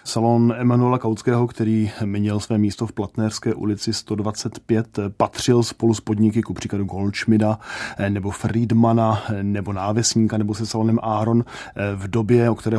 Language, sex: Czech, male